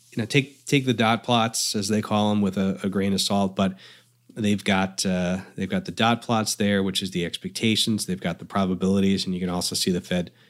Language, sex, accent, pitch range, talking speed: English, male, American, 95-110 Hz, 235 wpm